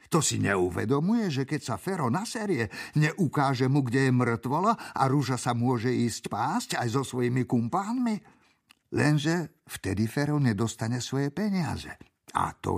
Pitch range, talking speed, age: 110-135 Hz, 145 wpm, 50-69